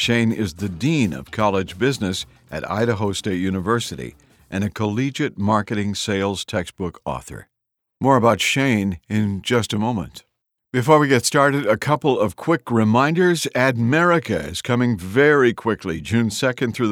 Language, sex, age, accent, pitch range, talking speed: English, male, 60-79, American, 105-130 Hz, 150 wpm